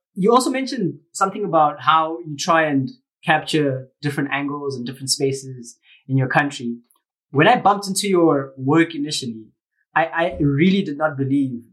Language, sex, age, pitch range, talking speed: English, male, 20-39, 135-165 Hz, 160 wpm